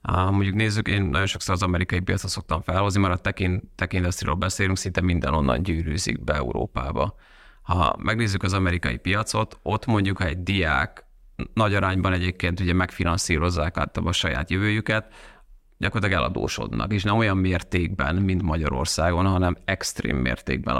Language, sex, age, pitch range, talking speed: Hungarian, male, 30-49, 85-100 Hz, 145 wpm